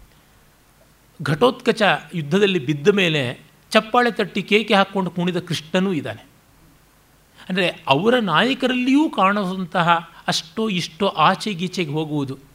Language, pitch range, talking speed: Kannada, 150-220 Hz, 90 wpm